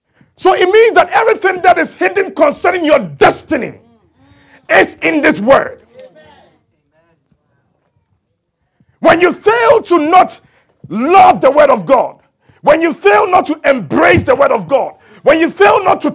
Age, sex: 50-69, male